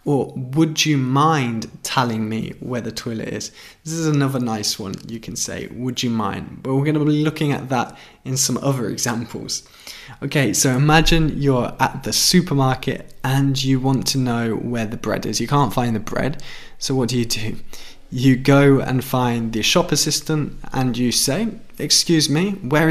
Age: 20-39